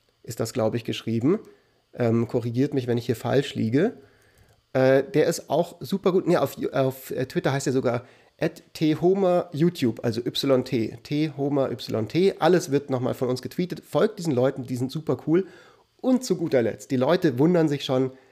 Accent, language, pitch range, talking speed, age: German, German, 125-165 Hz, 170 wpm, 30-49